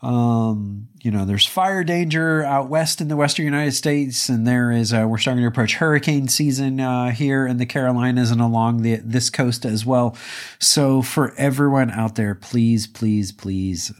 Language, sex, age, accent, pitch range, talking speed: English, male, 40-59, American, 110-150 Hz, 185 wpm